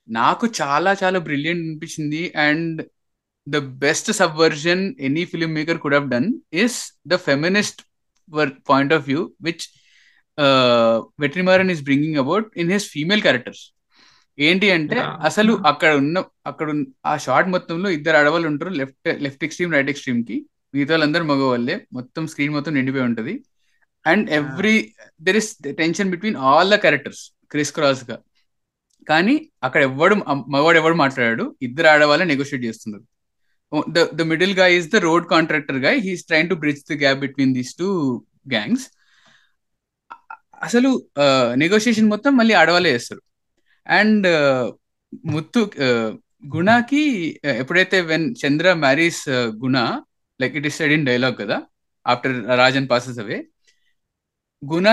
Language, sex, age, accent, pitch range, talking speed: Telugu, male, 20-39, native, 140-195 Hz, 130 wpm